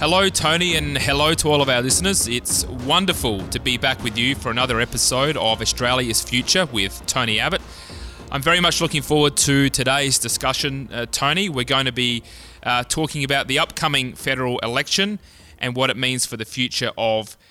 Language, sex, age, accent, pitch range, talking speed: English, male, 20-39, Australian, 115-140 Hz, 185 wpm